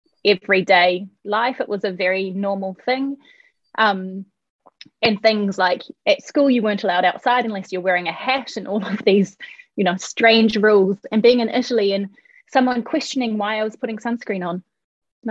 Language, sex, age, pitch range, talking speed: English, female, 20-39, 195-245 Hz, 175 wpm